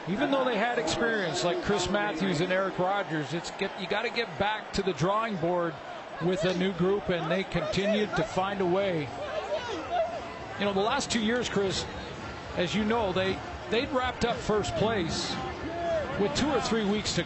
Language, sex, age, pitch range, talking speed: English, male, 50-69, 175-210 Hz, 185 wpm